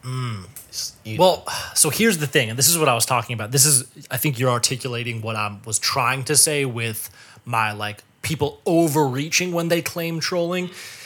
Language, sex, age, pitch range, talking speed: English, male, 20-39, 115-140 Hz, 190 wpm